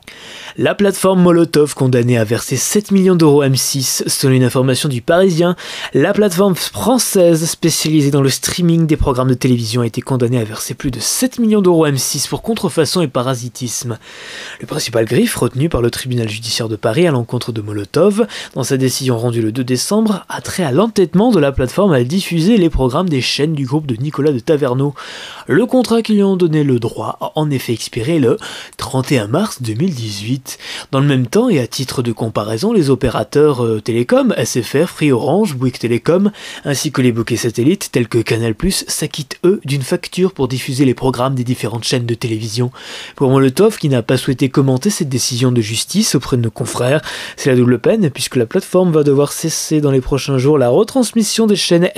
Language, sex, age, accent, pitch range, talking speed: French, male, 20-39, French, 125-175 Hz, 195 wpm